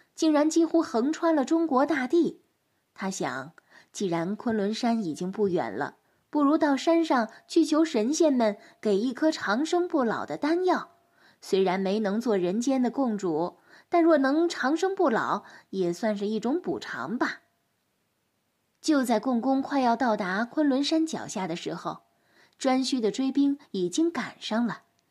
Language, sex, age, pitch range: Chinese, female, 10-29, 215-315 Hz